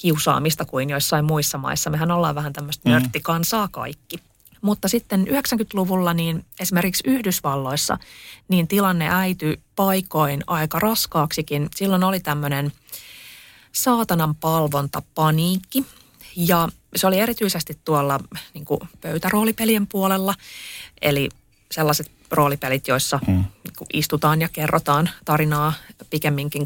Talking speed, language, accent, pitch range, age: 105 wpm, Finnish, native, 140-175 Hz, 30-49